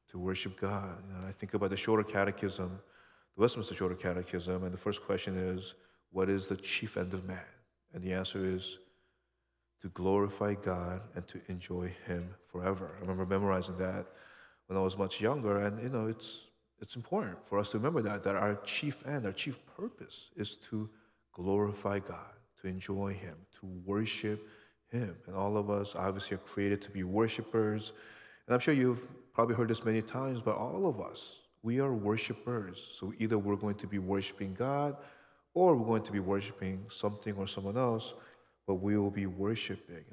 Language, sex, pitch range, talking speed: English, male, 95-110 Hz, 185 wpm